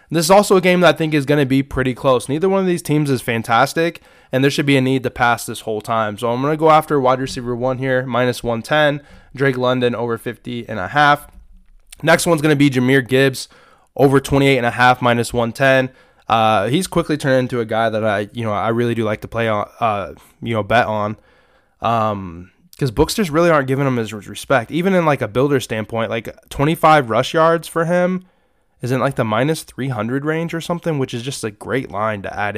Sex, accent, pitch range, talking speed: male, American, 115-145 Hz, 230 wpm